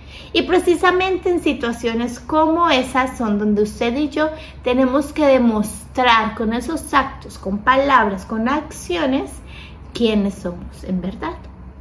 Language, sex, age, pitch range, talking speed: Spanish, female, 30-49, 235-310 Hz, 125 wpm